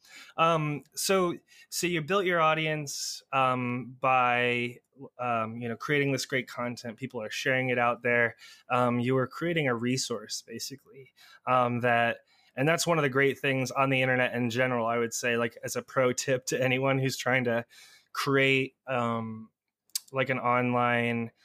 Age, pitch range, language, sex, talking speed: 20-39, 120-140 Hz, English, male, 170 wpm